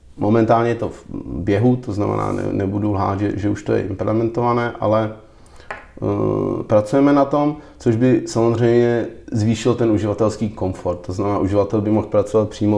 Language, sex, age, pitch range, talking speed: Czech, male, 30-49, 100-110 Hz, 165 wpm